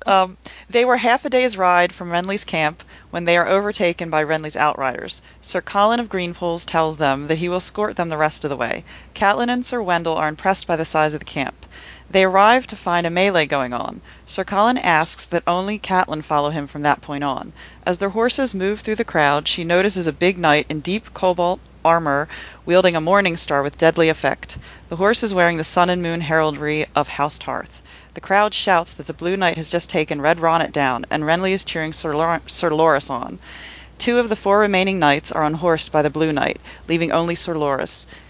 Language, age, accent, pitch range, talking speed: English, 40-59, American, 155-190 Hz, 215 wpm